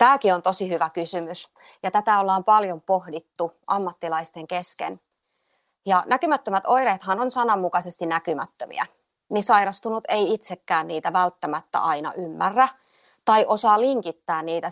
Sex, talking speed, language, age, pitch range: female, 120 wpm, Finnish, 30-49, 170-225 Hz